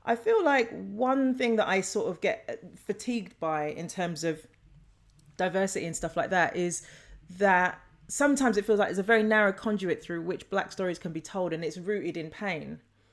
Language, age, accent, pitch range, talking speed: English, 30-49, British, 165-210 Hz, 195 wpm